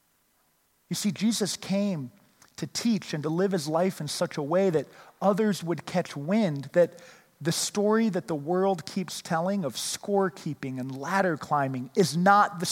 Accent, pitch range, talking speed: American, 155-205 Hz, 170 wpm